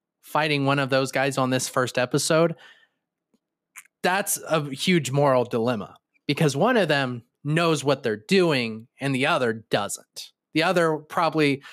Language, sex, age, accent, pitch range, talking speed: English, male, 20-39, American, 135-170 Hz, 150 wpm